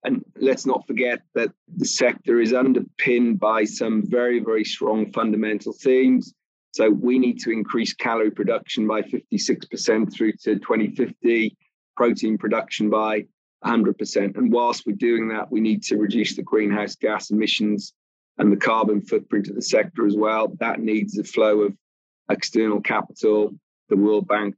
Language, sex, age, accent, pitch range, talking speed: English, male, 30-49, British, 105-110 Hz, 155 wpm